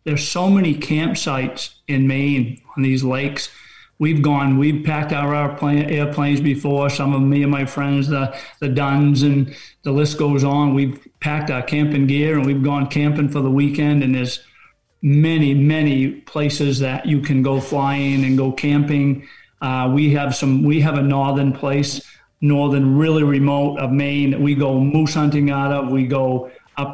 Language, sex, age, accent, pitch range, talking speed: English, male, 40-59, American, 135-145 Hz, 180 wpm